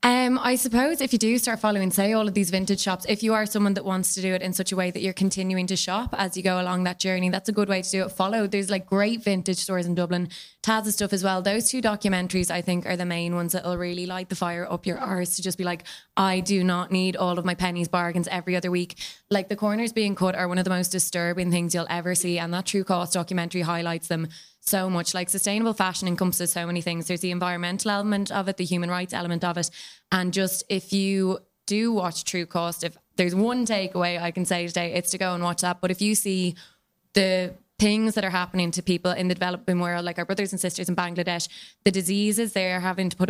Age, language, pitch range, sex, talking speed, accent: 20-39, English, 175-195 Hz, female, 255 wpm, Irish